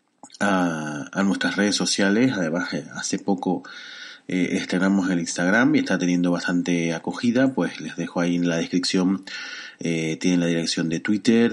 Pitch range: 85-115 Hz